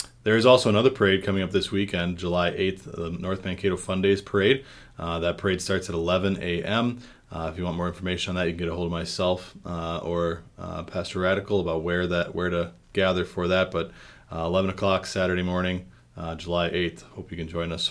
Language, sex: English, male